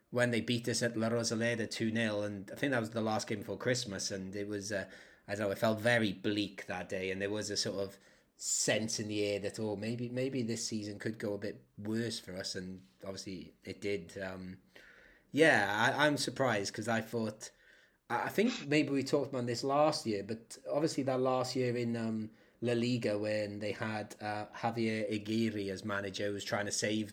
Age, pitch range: 30-49, 105-120 Hz